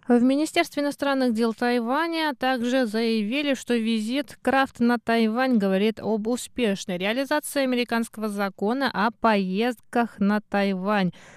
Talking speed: 115 wpm